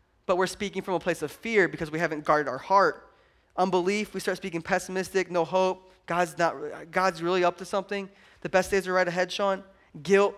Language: English